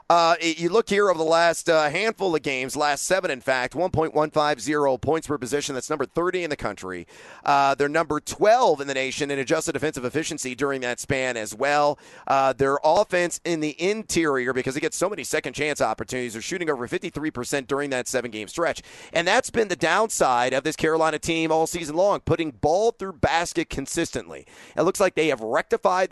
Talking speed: 200 wpm